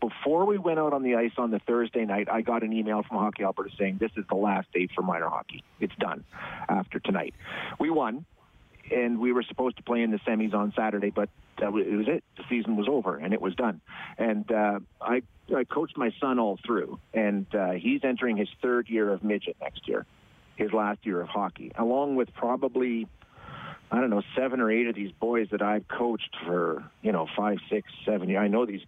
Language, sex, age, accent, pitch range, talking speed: English, male, 40-59, American, 100-120 Hz, 220 wpm